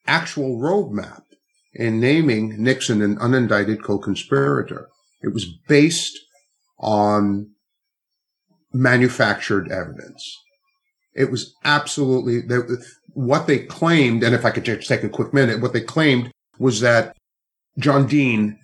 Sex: male